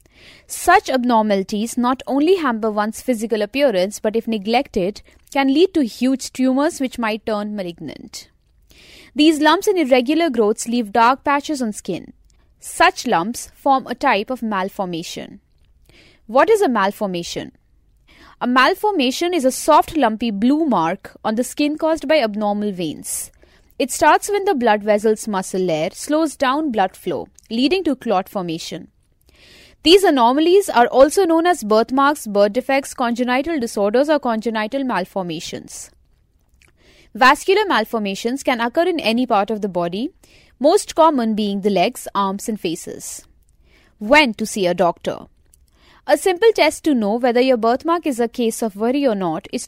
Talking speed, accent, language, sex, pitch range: 150 wpm, Indian, English, female, 210-295 Hz